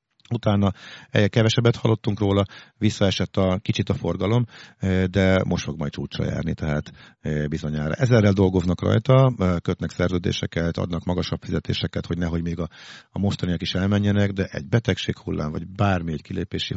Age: 50-69